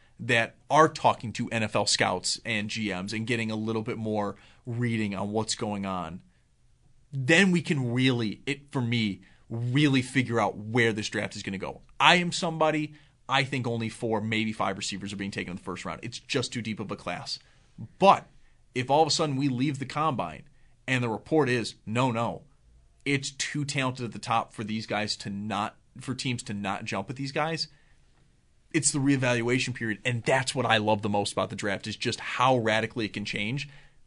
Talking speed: 205 wpm